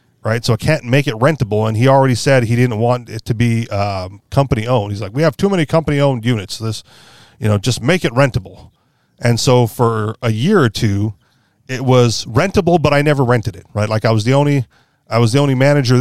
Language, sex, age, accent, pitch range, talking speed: English, male, 30-49, American, 110-140 Hz, 230 wpm